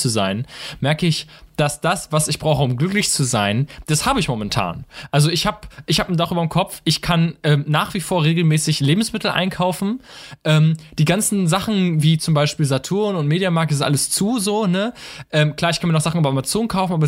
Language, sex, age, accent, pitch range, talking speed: German, male, 20-39, German, 145-180 Hz, 220 wpm